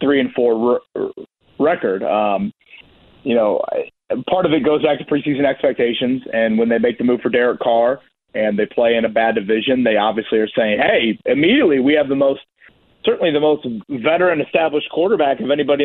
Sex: male